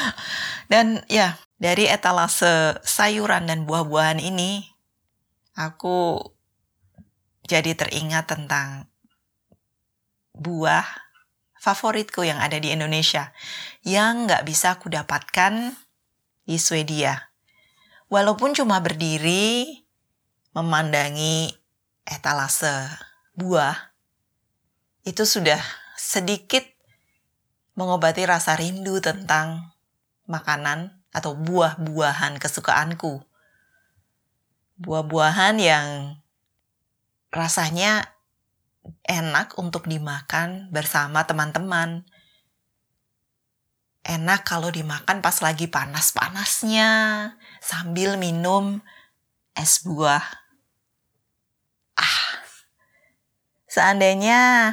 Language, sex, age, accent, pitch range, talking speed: Indonesian, female, 20-39, native, 150-190 Hz, 70 wpm